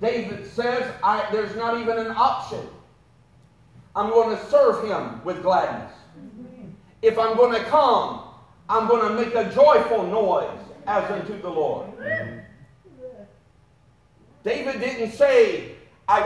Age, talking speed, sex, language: 50-69, 130 wpm, male, English